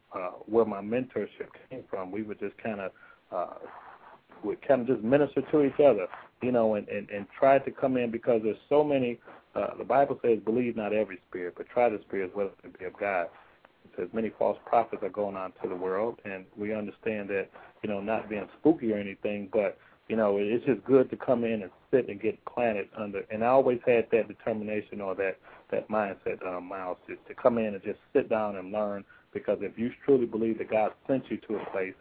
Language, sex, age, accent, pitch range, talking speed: English, male, 40-59, American, 100-125 Hz, 225 wpm